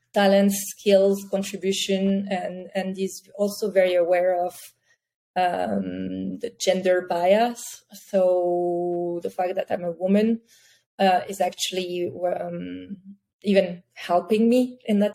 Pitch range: 180-200 Hz